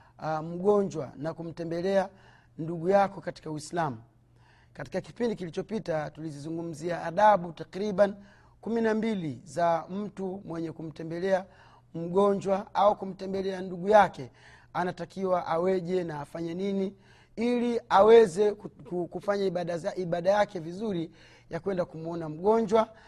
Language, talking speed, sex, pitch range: Swahili, 100 wpm, male, 155-200 Hz